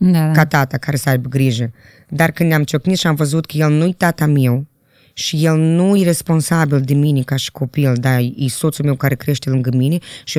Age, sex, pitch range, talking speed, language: 20-39, female, 140-185 Hz, 215 wpm, Romanian